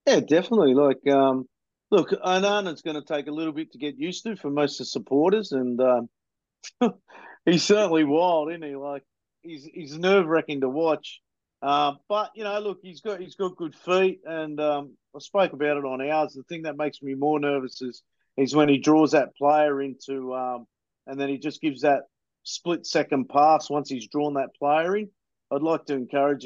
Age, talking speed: 50-69, 200 wpm